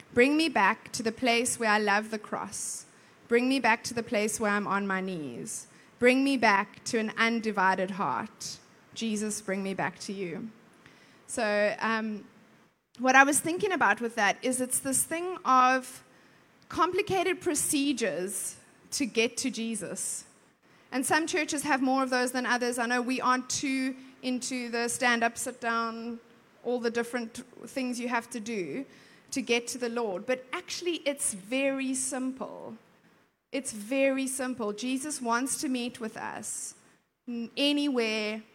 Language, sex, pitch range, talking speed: English, female, 220-260 Hz, 160 wpm